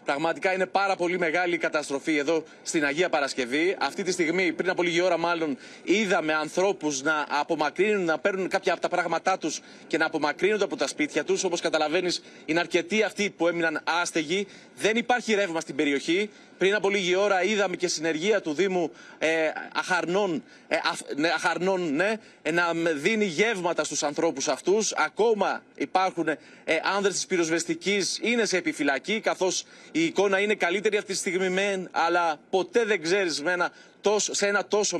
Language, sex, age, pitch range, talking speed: Greek, male, 30-49, 170-205 Hz, 155 wpm